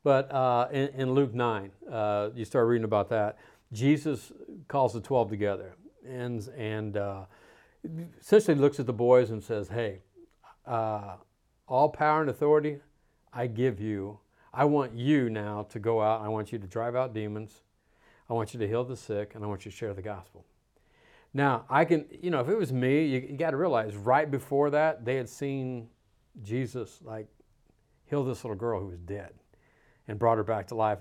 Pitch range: 110-135 Hz